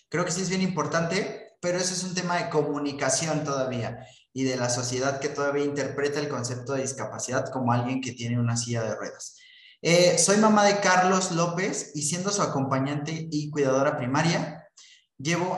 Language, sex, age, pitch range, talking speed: Spanish, male, 20-39, 130-165 Hz, 180 wpm